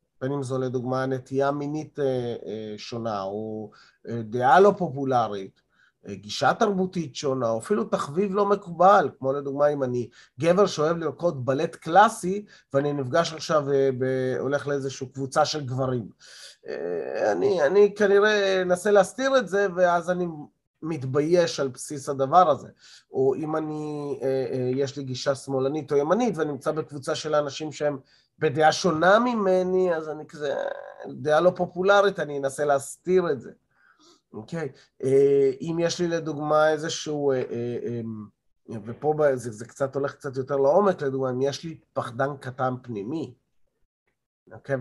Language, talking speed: Hebrew, 145 wpm